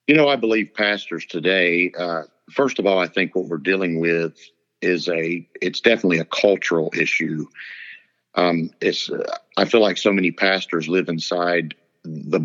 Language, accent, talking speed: English, American, 170 wpm